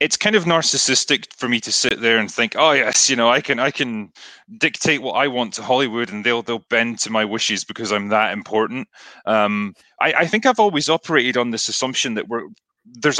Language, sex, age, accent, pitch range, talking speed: English, male, 30-49, British, 105-140 Hz, 225 wpm